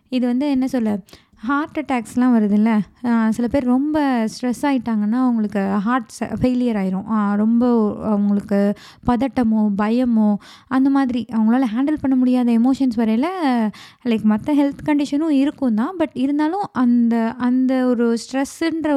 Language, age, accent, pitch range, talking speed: Tamil, 20-39, native, 225-275 Hz, 130 wpm